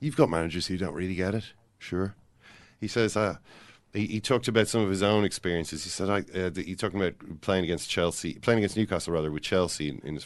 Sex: male